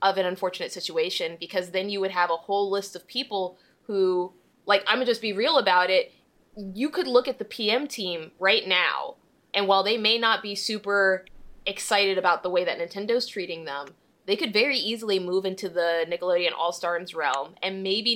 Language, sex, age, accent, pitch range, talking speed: English, female, 20-39, American, 180-215 Hz, 195 wpm